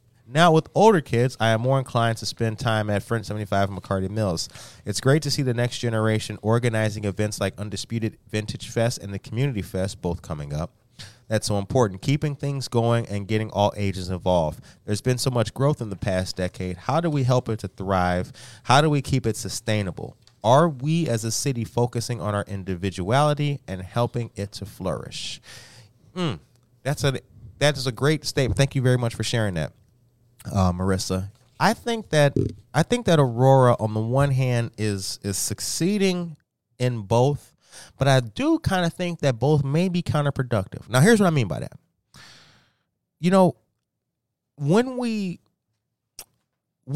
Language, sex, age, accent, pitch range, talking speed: English, male, 30-49, American, 105-140 Hz, 175 wpm